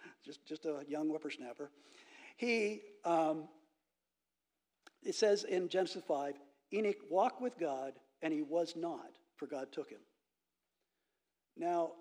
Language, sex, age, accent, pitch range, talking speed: English, male, 50-69, American, 145-200 Hz, 125 wpm